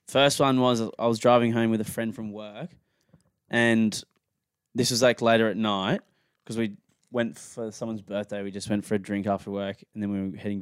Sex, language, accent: male, English, Australian